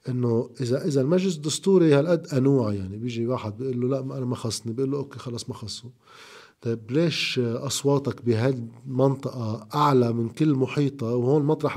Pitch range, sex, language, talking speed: 120-155 Hz, male, Arabic, 165 wpm